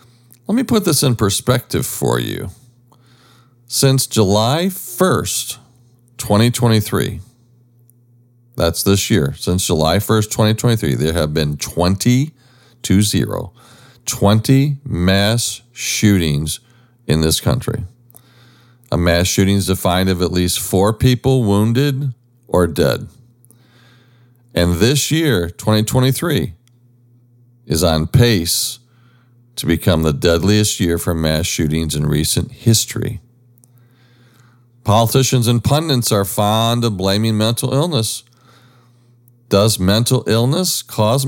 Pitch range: 100-125 Hz